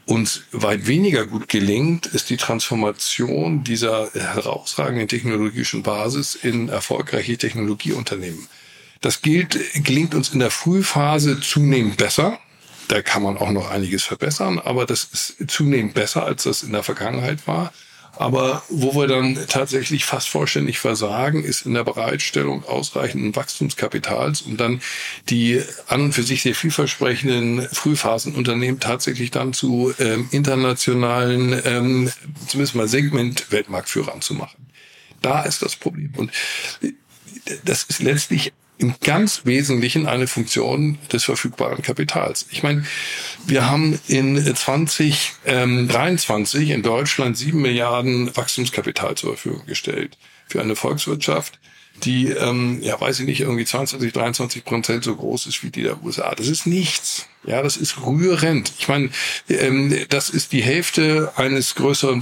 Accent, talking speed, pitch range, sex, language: German, 135 wpm, 120-145 Hz, male, German